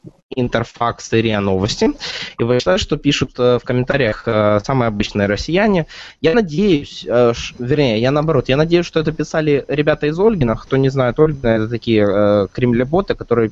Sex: male